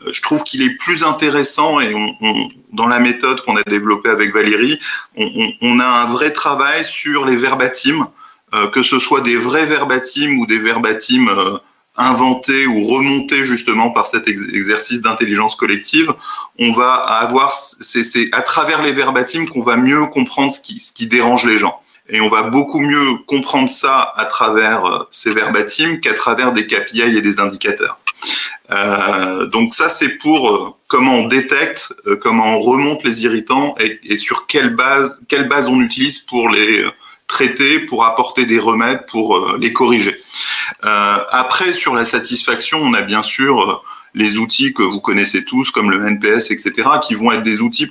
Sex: male